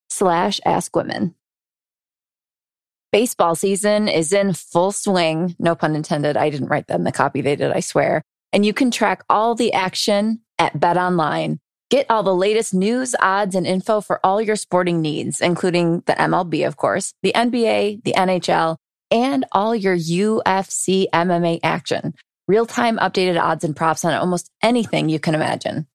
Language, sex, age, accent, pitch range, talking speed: English, female, 20-39, American, 170-220 Hz, 160 wpm